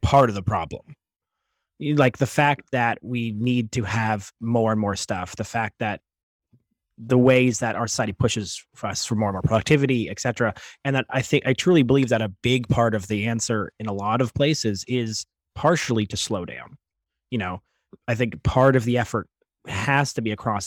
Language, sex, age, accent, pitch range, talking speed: English, male, 30-49, American, 105-125 Hz, 205 wpm